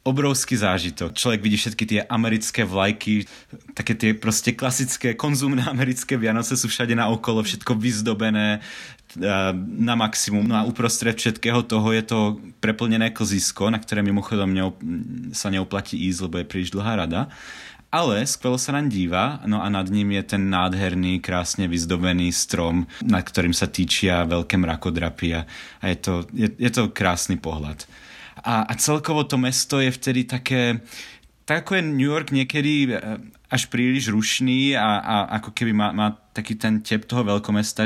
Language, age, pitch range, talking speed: Slovak, 30-49, 95-120 Hz, 160 wpm